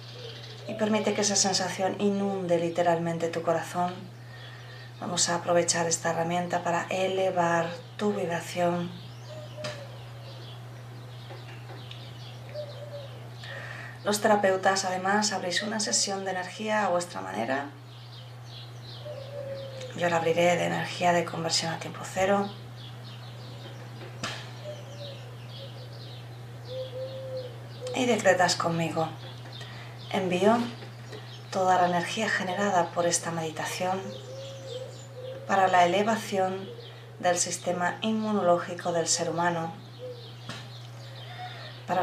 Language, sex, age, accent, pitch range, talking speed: Spanish, female, 30-49, Spanish, 120-180 Hz, 85 wpm